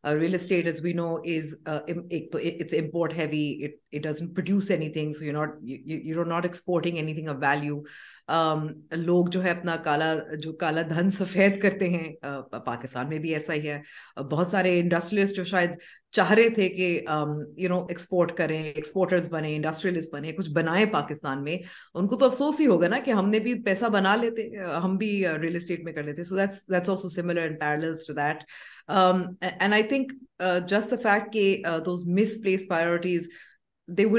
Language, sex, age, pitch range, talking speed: Urdu, female, 30-49, 155-190 Hz, 135 wpm